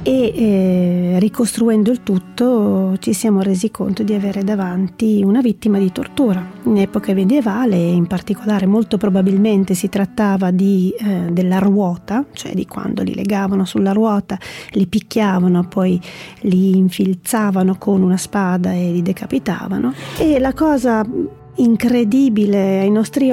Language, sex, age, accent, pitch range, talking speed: Italian, female, 30-49, native, 190-230 Hz, 135 wpm